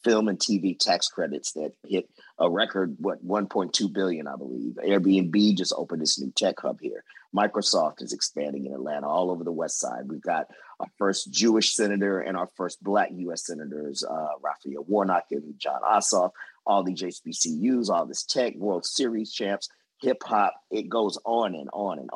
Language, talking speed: English, 180 wpm